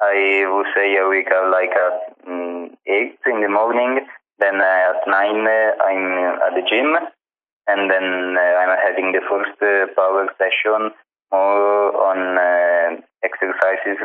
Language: German